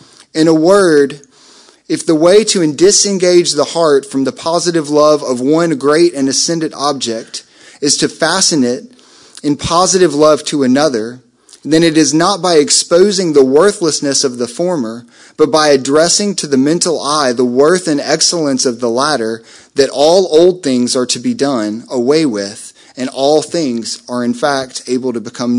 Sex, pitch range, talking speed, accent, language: male, 135-175 Hz, 170 wpm, American, English